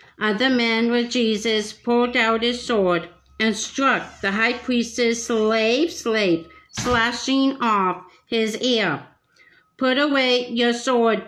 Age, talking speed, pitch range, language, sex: 60-79, 120 wpm, 215-250 Hz, English, female